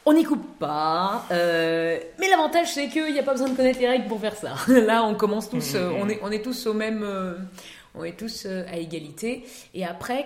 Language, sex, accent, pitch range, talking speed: French, female, French, 170-215 Hz, 240 wpm